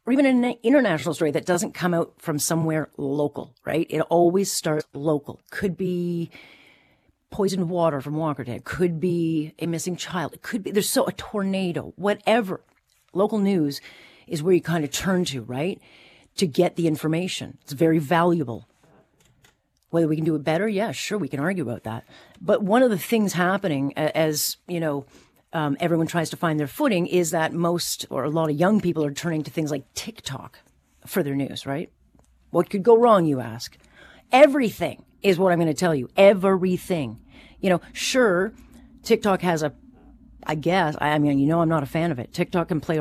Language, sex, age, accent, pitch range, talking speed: English, female, 40-59, American, 155-195 Hz, 195 wpm